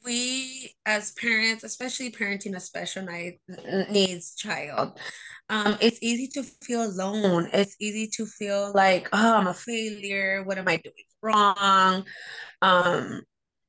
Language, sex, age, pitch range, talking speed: English, female, 20-39, 180-220 Hz, 130 wpm